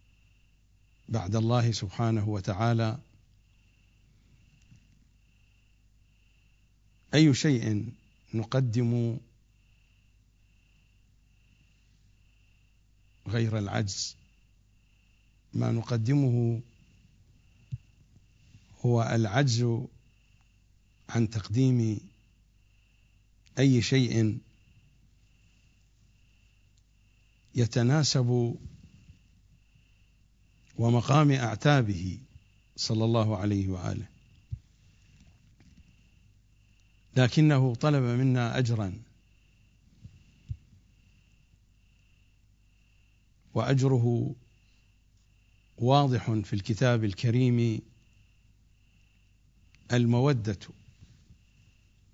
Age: 50-69